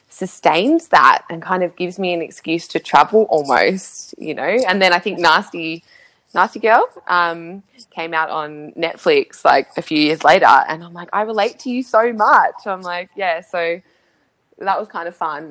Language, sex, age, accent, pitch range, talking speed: English, female, 20-39, Australian, 155-185 Hz, 190 wpm